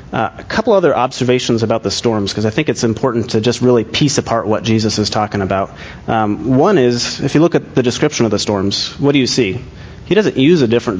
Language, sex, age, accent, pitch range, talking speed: English, male, 30-49, American, 110-125 Hz, 240 wpm